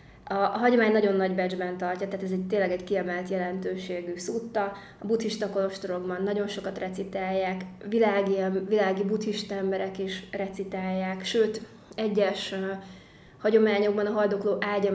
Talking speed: 130 wpm